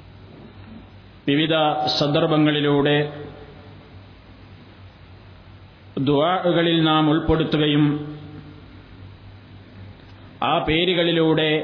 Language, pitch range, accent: Malayalam, 100-165 Hz, native